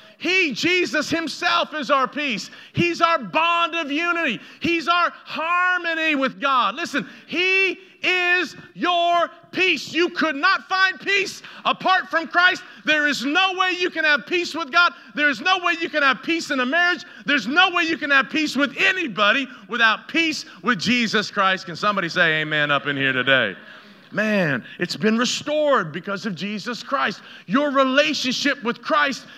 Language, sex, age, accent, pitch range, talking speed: English, male, 40-59, American, 245-330 Hz, 170 wpm